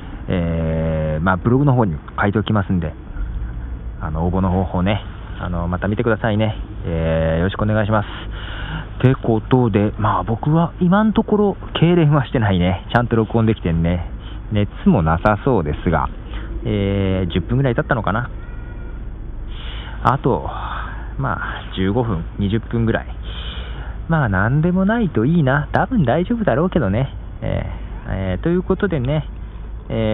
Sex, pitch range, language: male, 85-120 Hz, Japanese